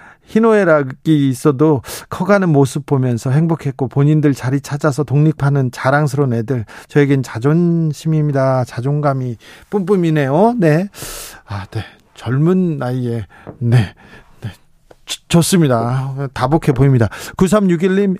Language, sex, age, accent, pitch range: Korean, male, 40-59, native, 140-185 Hz